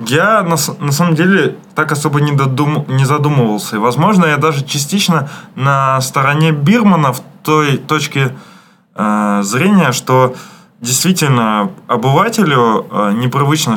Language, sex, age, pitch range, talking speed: Russian, male, 20-39, 125-170 Hz, 115 wpm